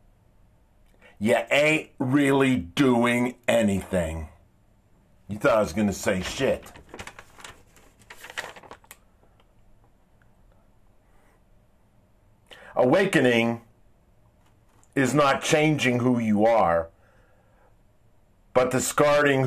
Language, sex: English, male